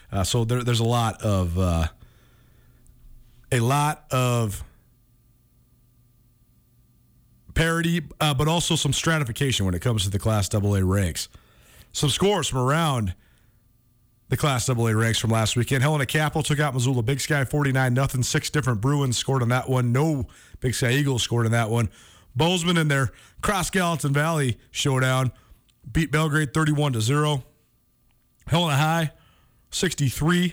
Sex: male